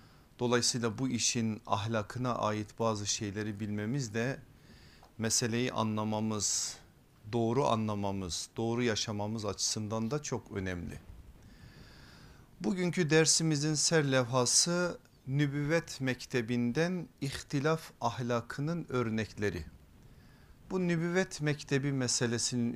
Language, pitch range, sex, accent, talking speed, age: Turkish, 110-140 Hz, male, native, 85 wpm, 50-69